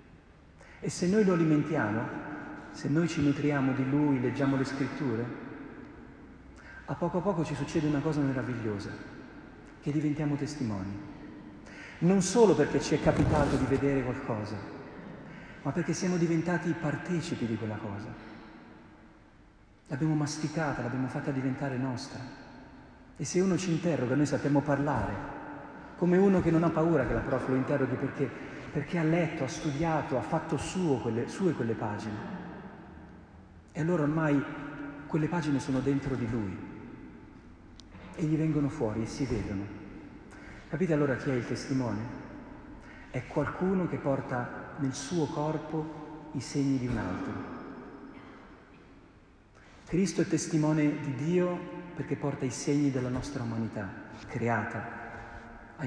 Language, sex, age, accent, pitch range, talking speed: Italian, male, 40-59, native, 115-155 Hz, 140 wpm